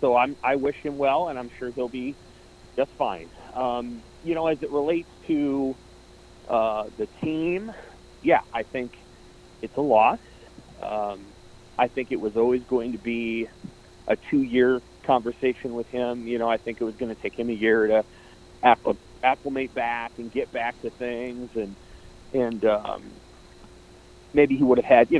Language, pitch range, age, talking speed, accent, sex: English, 110-130 Hz, 30-49, 175 wpm, American, male